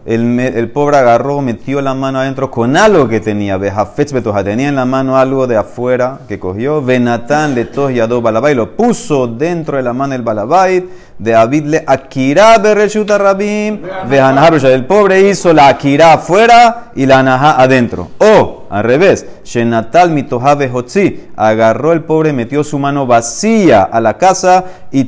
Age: 30-49